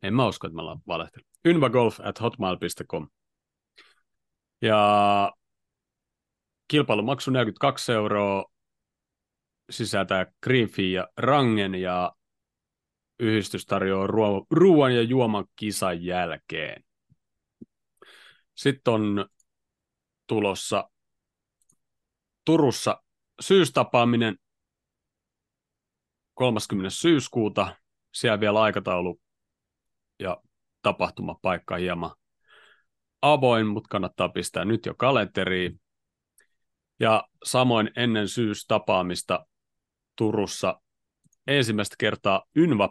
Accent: native